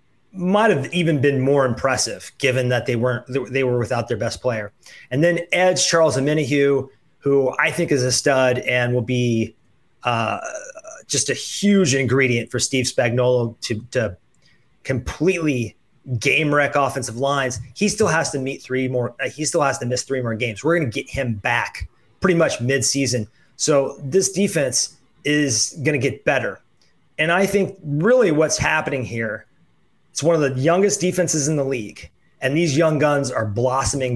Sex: male